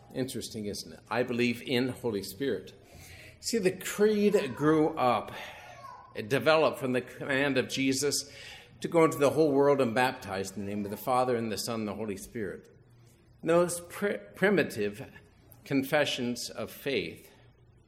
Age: 50-69